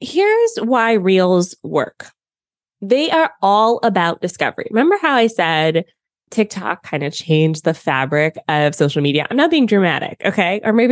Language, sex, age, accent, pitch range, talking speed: English, female, 20-39, American, 180-255 Hz, 160 wpm